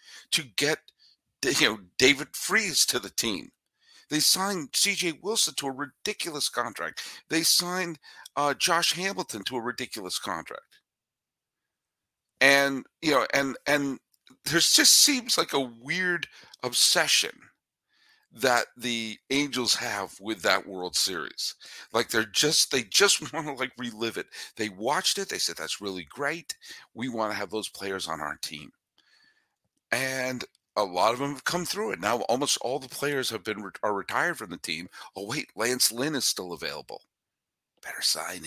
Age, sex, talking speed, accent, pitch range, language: 50-69, male, 160 wpm, American, 110-155 Hz, English